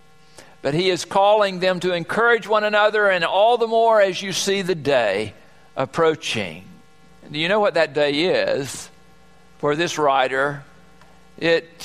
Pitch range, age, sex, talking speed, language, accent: 155-220 Hz, 60-79, male, 150 wpm, English, American